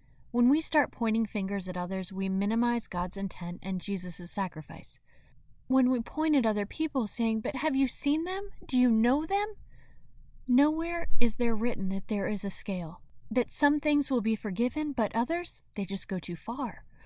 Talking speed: 185 wpm